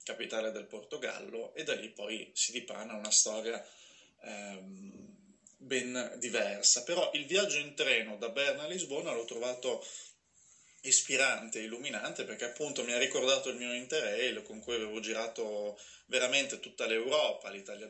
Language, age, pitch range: Italian, 20-39, 110-155 Hz